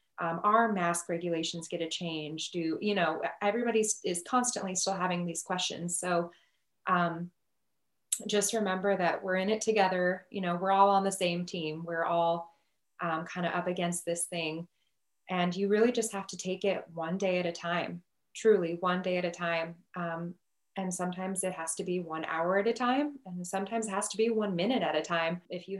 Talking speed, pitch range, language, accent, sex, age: 200 wpm, 170-200 Hz, English, American, female, 20-39